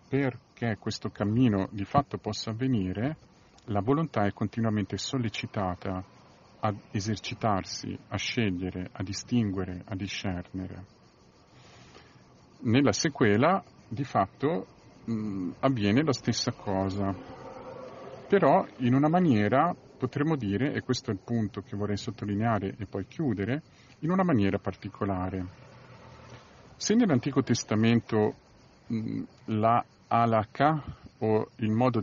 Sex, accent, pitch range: male, native, 100-130 Hz